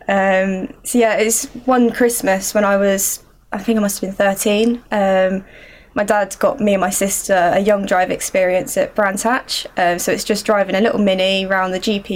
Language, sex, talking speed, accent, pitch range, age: English, female, 210 wpm, British, 190-220 Hz, 10-29